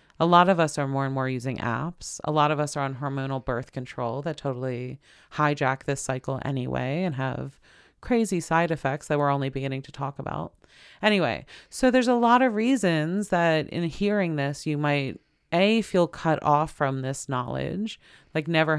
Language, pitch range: English, 130-160 Hz